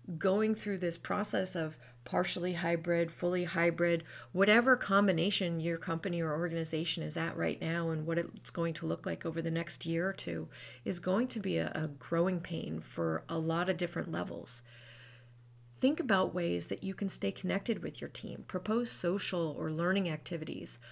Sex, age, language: female, 30-49, English